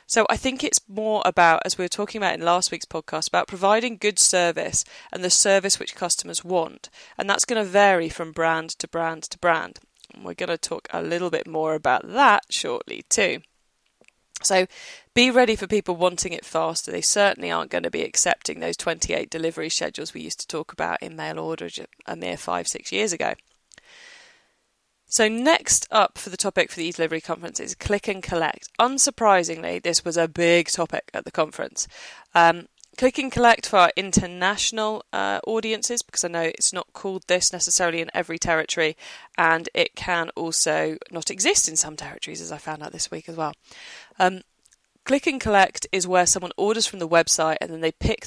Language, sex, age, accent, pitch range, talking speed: English, female, 20-39, British, 165-210 Hz, 195 wpm